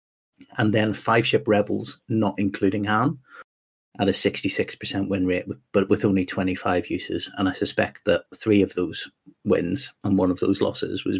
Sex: male